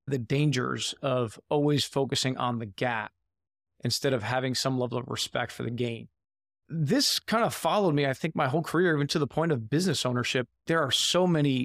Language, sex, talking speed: English, male, 200 wpm